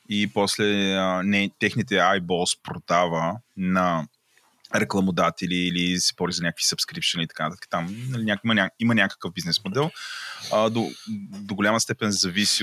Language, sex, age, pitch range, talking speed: Bulgarian, male, 20-39, 100-120 Hz, 135 wpm